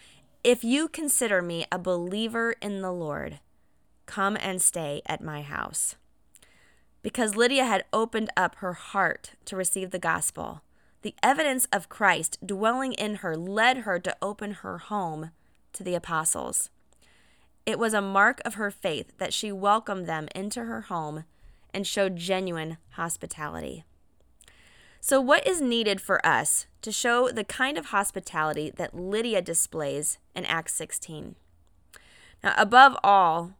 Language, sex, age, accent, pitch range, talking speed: English, female, 20-39, American, 160-220 Hz, 145 wpm